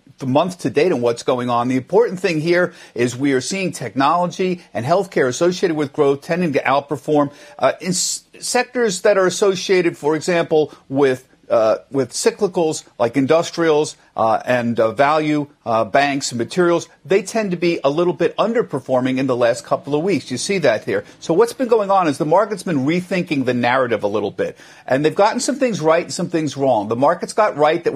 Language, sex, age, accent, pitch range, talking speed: English, male, 50-69, American, 140-190 Hz, 210 wpm